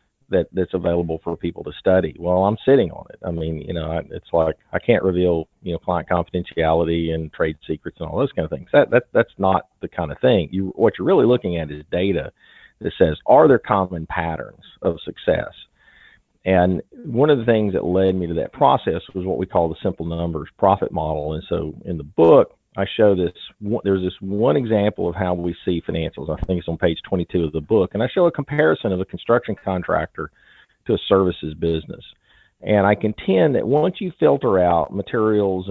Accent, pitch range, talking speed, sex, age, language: American, 85-105 Hz, 210 wpm, male, 40-59, English